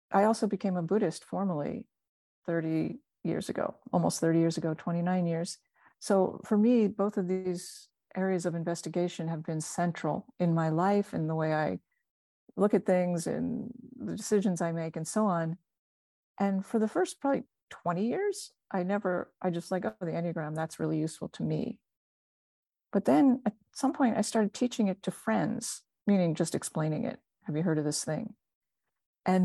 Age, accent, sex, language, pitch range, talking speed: 40-59, American, female, English, 170-210 Hz, 175 wpm